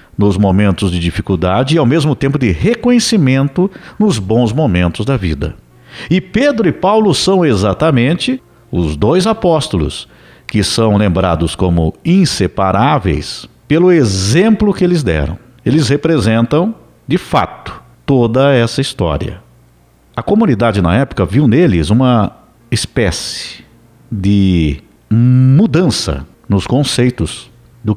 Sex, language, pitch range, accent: male, Portuguese, 100-160 Hz, Brazilian